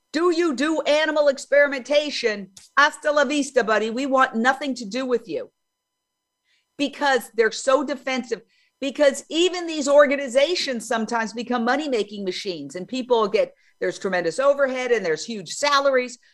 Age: 50-69